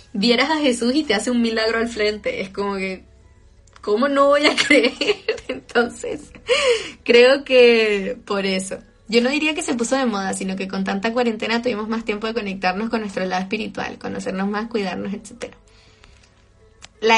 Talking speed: 175 wpm